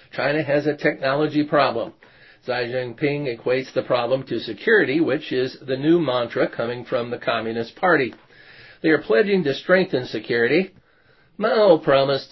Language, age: English, 50-69